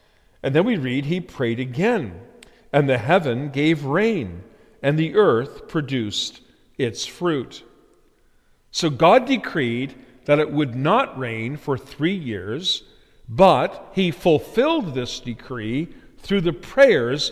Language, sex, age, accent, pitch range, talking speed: English, male, 50-69, American, 115-160 Hz, 130 wpm